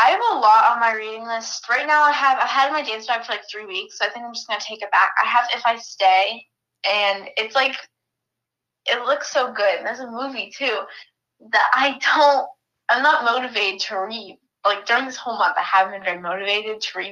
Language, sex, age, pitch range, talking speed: English, female, 10-29, 200-255 Hz, 240 wpm